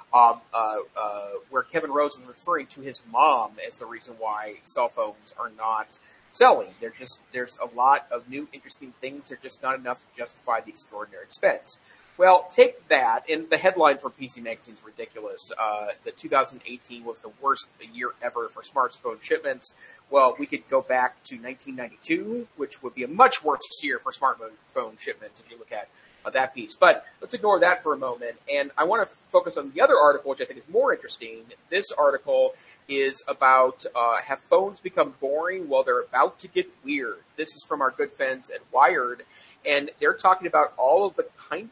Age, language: 30-49, English